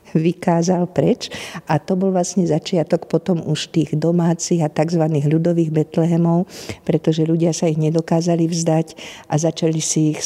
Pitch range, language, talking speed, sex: 155-175 Hz, Slovak, 145 wpm, female